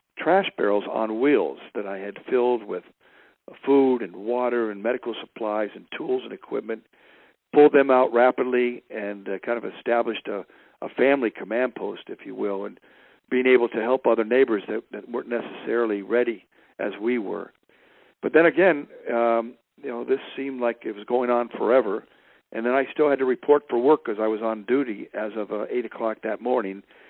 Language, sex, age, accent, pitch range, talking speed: English, male, 60-79, American, 110-130 Hz, 190 wpm